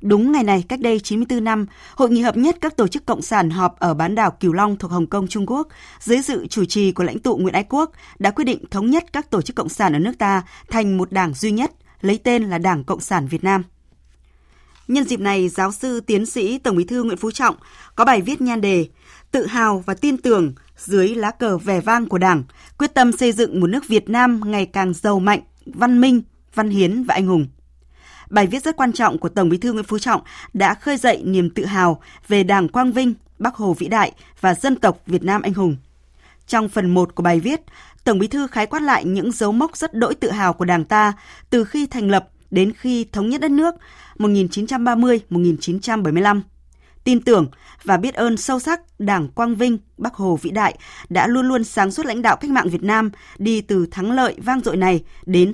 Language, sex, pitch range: Vietnamese, female, 185-245 Hz